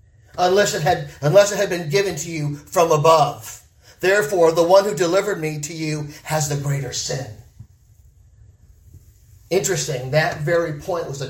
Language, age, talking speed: English, 40-59, 160 wpm